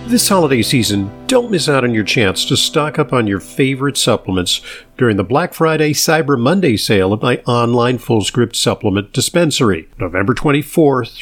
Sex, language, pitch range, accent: male, English, 115-160 Hz, American